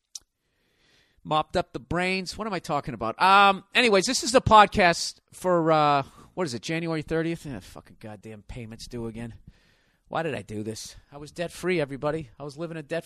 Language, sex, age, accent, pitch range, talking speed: English, male, 40-59, American, 125-175 Hz, 200 wpm